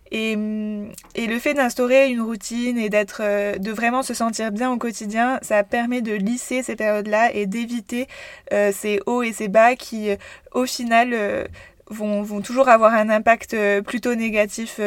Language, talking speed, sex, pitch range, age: French, 170 wpm, female, 200-245 Hz, 20-39